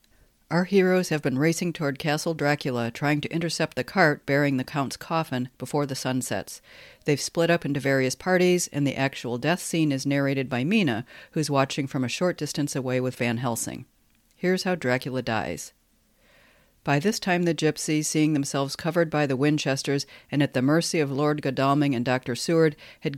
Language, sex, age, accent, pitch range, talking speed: English, female, 50-69, American, 130-155 Hz, 185 wpm